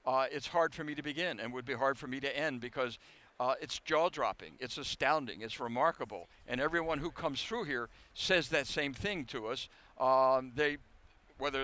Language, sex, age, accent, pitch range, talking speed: English, male, 60-79, American, 125-150 Hz, 195 wpm